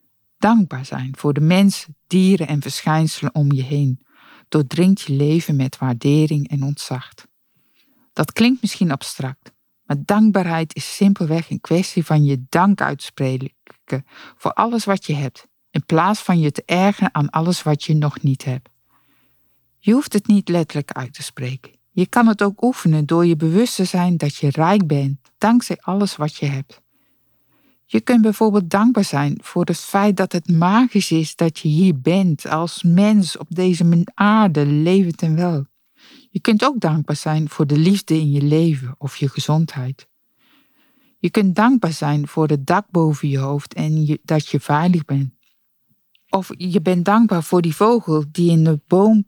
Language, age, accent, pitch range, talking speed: Dutch, 50-69, Dutch, 145-195 Hz, 170 wpm